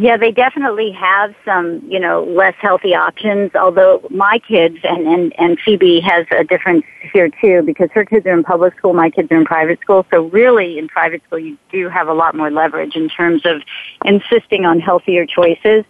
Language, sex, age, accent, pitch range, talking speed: English, female, 40-59, American, 160-205 Hz, 205 wpm